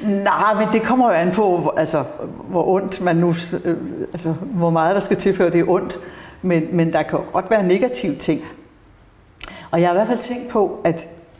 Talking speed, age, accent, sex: 205 wpm, 60-79, native, female